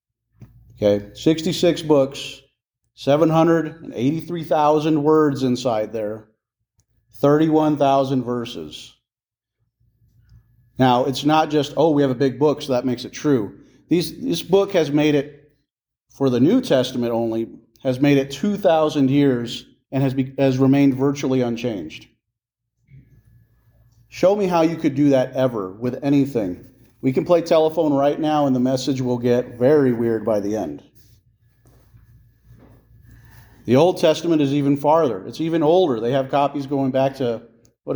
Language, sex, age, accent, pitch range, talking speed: English, male, 40-59, American, 120-145 Hz, 140 wpm